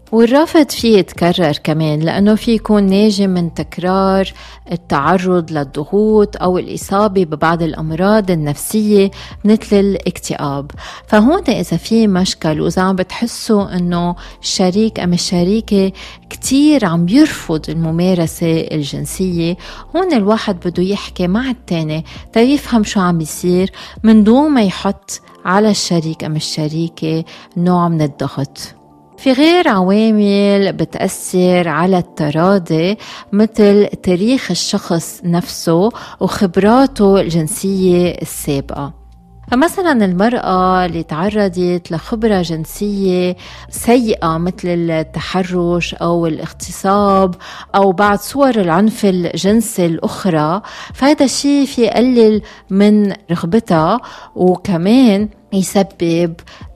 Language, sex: Arabic, female